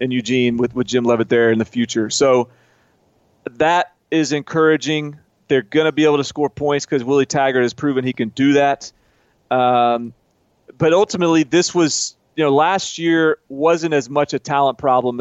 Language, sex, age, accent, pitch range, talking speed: English, male, 30-49, American, 130-160 Hz, 180 wpm